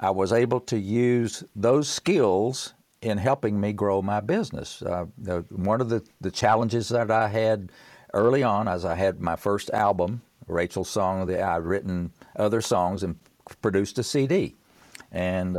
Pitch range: 90-115 Hz